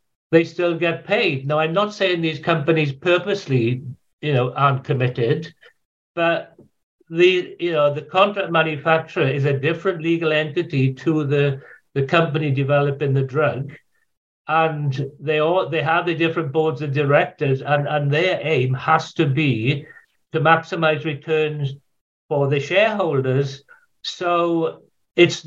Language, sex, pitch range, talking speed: English, male, 140-170 Hz, 140 wpm